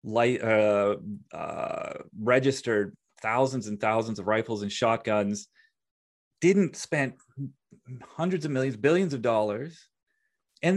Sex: male